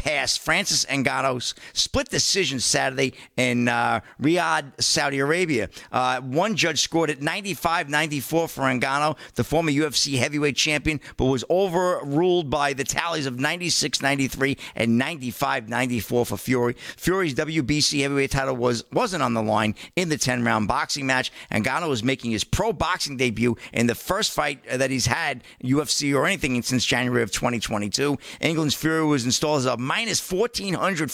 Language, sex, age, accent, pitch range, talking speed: English, male, 50-69, American, 120-150 Hz, 150 wpm